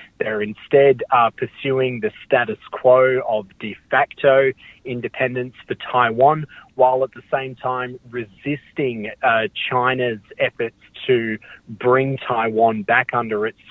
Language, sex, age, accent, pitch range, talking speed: English, male, 30-49, Australian, 115-135 Hz, 125 wpm